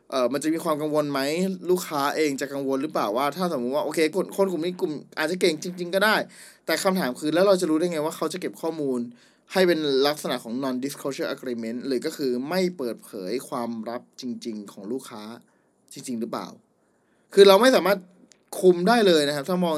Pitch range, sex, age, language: 135-180 Hz, male, 20-39, Thai